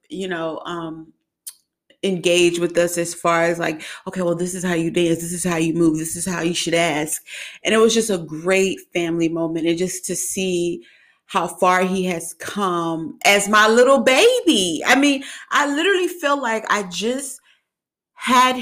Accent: American